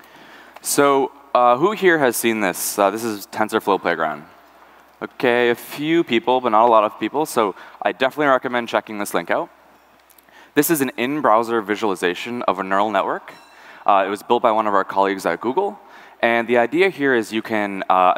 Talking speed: 190 wpm